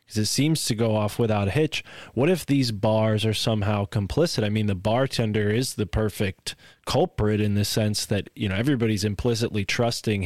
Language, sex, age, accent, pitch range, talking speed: English, male, 20-39, American, 105-120 Hz, 195 wpm